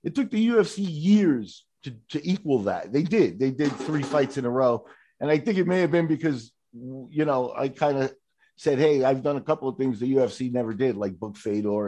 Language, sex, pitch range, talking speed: English, male, 135-185 Hz, 230 wpm